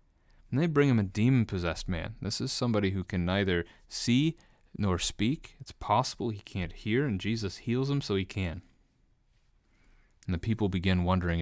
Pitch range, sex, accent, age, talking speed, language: 85-100 Hz, male, American, 30-49, 175 wpm, English